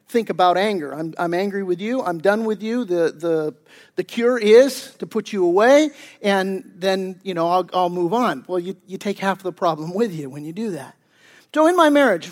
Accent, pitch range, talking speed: American, 175-235 Hz, 225 wpm